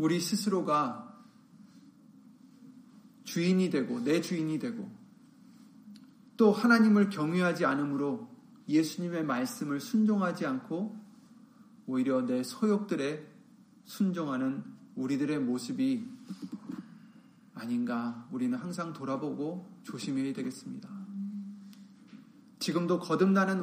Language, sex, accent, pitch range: Korean, male, native, 180-235 Hz